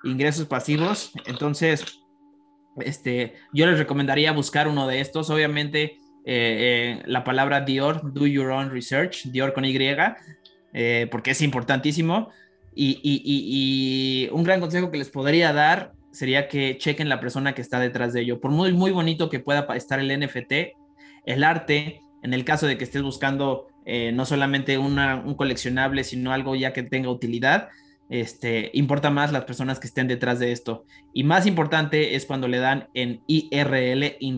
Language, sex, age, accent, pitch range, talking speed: Spanish, male, 20-39, Mexican, 130-155 Hz, 170 wpm